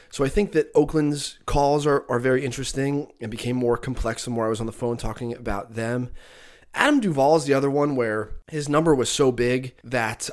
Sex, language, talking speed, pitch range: male, English, 215 wpm, 120-145 Hz